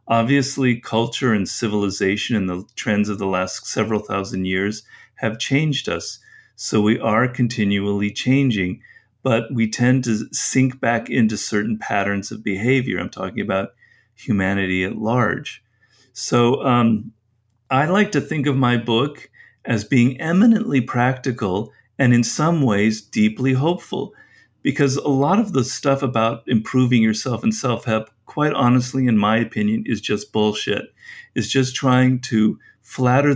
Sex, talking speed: male, 145 wpm